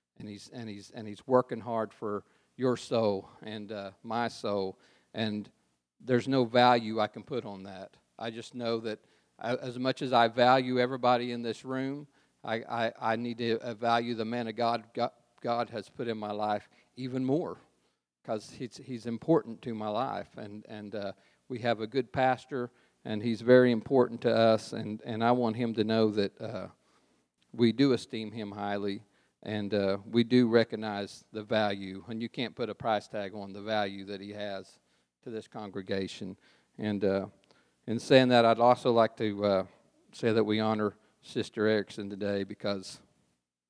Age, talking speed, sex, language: 50-69, 185 wpm, male, English